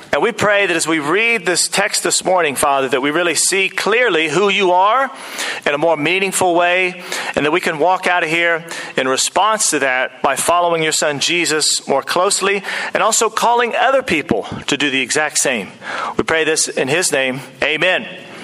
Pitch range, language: 165-205 Hz, English